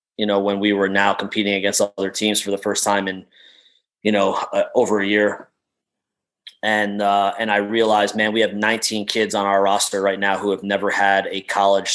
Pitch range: 100-110 Hz